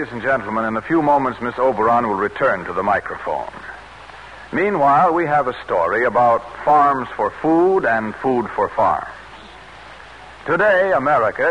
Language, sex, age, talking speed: English, male, 60-79, 150 wpm